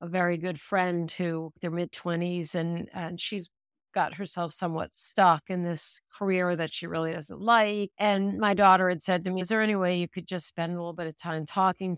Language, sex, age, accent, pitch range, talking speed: English, female, 50-69, American, 185-260 Hz, 220 wpm